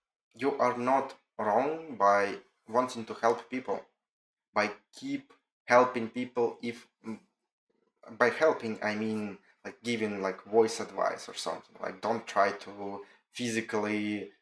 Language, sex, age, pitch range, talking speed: English, male, 20-39, 105-120 Hz, 125 wpm